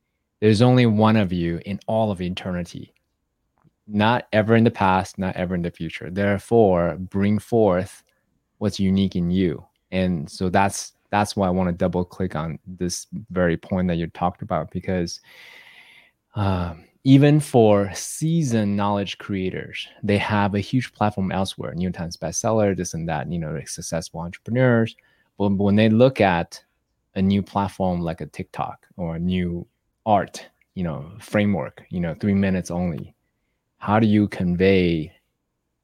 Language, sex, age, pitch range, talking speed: English, male, 20-39, 90-110 Hz, 160 wpm